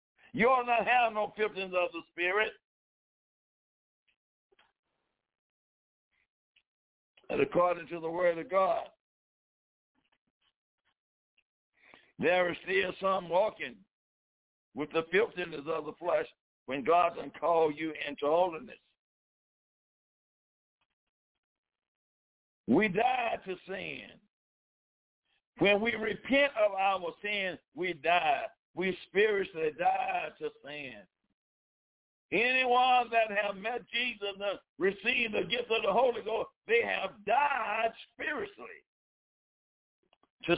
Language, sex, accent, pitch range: English, male, American, 165-235 Hz